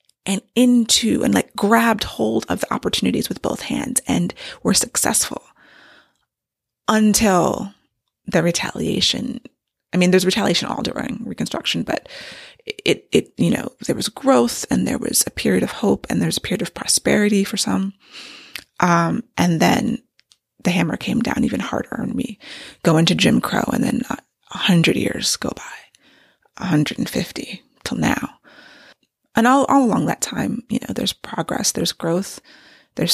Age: 20-39